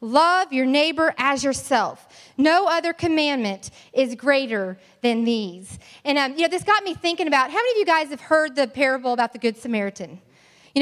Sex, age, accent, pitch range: female, 30-49, American, 245-335 Hz